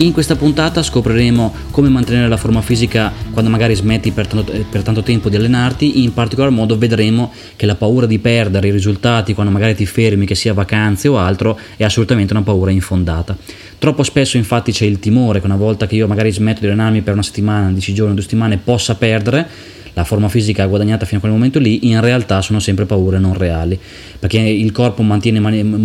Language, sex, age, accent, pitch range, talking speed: Italian, male, 20-39, native, 100-115 Hz, 210 wpm